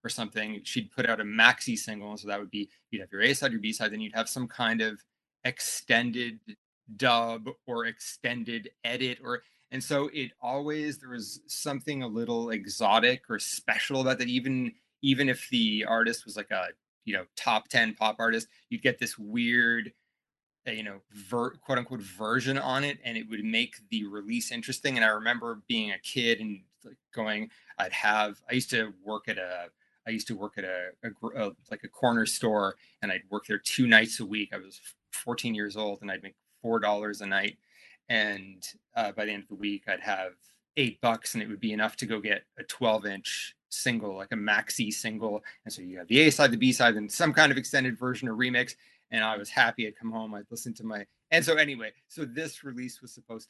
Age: 20-39